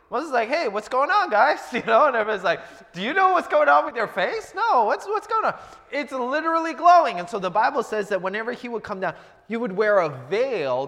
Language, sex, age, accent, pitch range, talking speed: English, male, 20-39, American, 145-235 Hz, 255 wpm